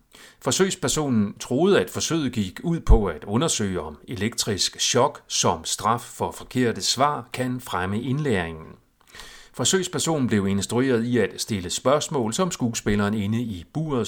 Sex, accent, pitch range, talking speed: male, native, 105-145 Hz, 135 wpm